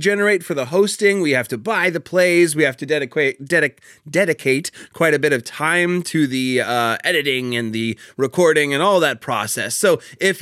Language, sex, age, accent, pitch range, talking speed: English, male, 30-49, American, 145-190 Hz, 195 wpm